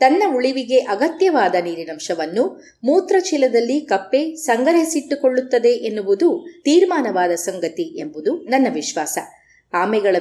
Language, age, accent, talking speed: Kannada, 20-39, native, 80 wpm